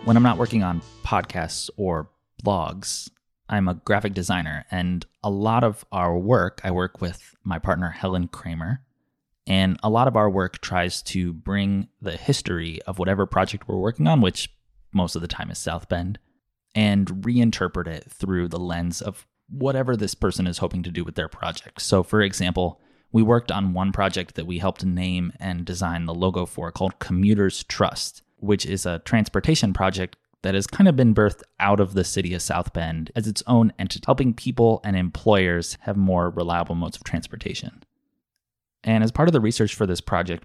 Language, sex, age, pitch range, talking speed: English, male, 20-39, 90-110 Hz, 190 wpm